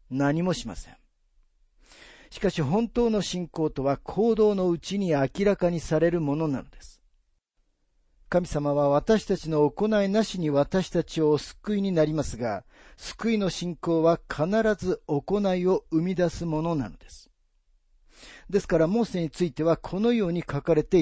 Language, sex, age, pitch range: Japanese, male, 50-69, 135-190 Hz